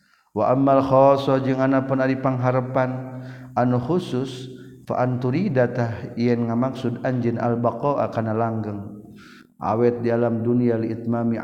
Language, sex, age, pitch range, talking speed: Indonesian, male, 50-69, 115-130 Hz, 120 wpm